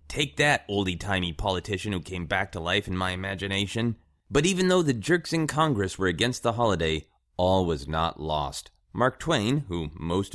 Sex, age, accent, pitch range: male, 30-49, American, 80-115 Hz